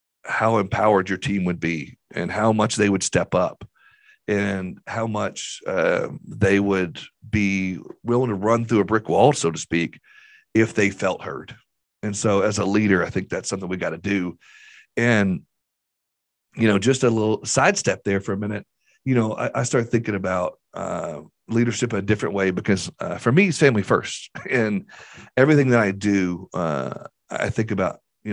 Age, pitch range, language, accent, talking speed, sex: 40-59, 90-110 Hz, English, American, 185 wpm, male